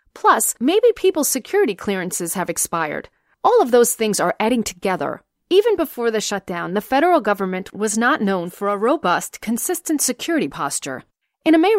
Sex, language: female, English